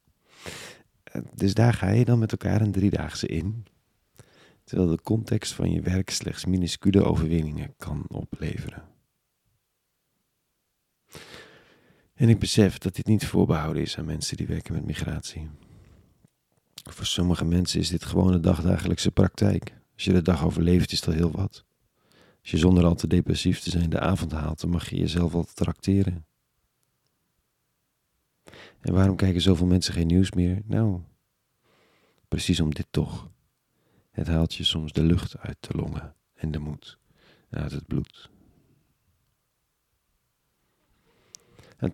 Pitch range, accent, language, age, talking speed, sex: 85-100 Hz, Dutch, Dutch, 40-59, 140 wpm, male